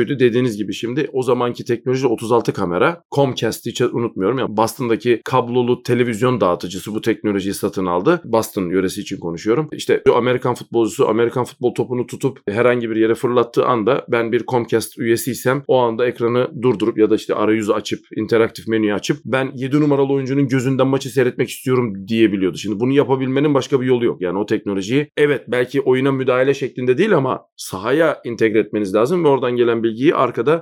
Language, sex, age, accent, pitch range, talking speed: Turkish, male, 40-59, native, 110-140 Hz, 170 wpm